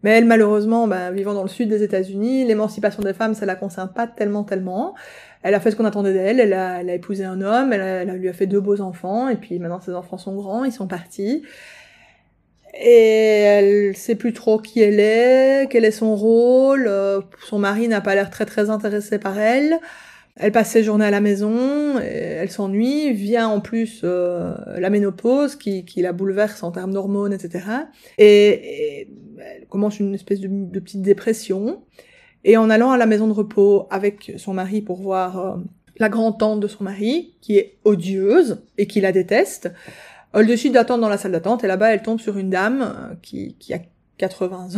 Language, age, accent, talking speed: French, 20-39, French, 205 wpm